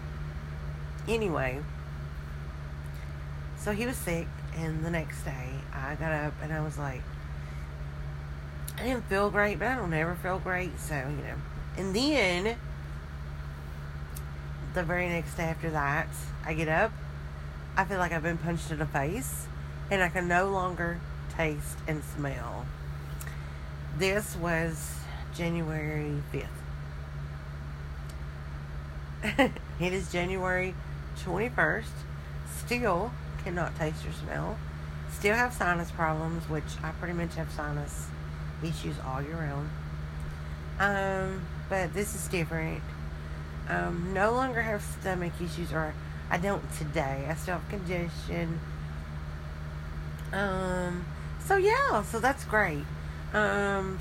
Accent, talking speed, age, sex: American, 125 wpm, 40-59, female